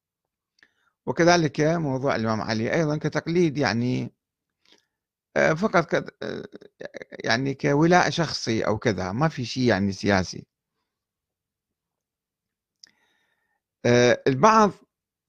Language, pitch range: Arabic, 105-150 Hz